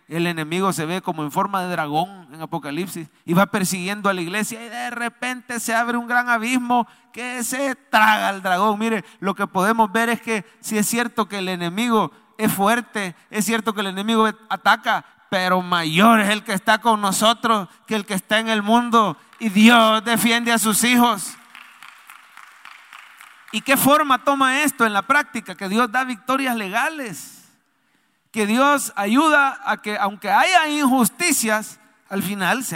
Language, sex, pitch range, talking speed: English, male, 200-255 Hz, 175 wpm